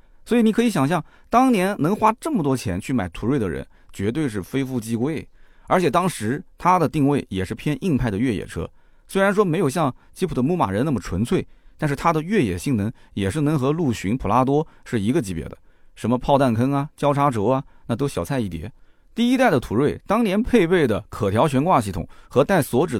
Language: Chinese